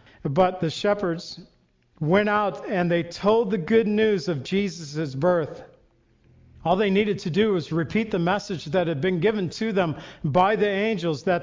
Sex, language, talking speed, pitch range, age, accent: male, English, 175 wpm, 170-205 Hz, 50-69, American